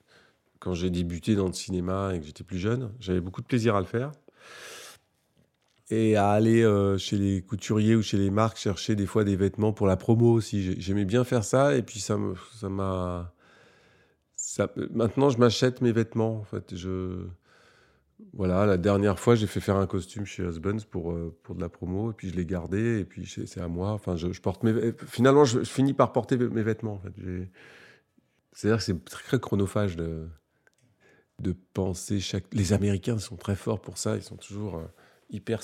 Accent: French